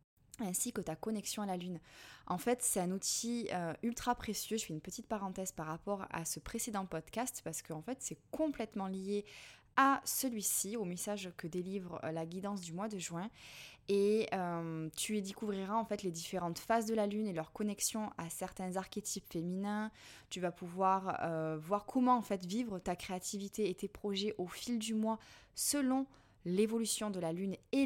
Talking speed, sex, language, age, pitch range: 185 wpm, female, French, 20-39, 170-215 Hz